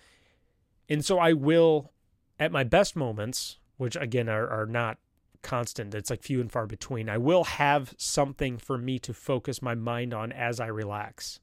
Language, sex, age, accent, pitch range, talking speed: English, male, 30-49, American, 95-135 Hz, 180 wpm